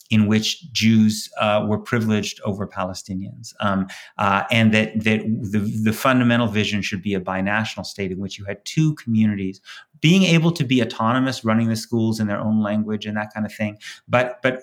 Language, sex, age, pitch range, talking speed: English, male, 30-49, 105-125 Hz, 195 wpm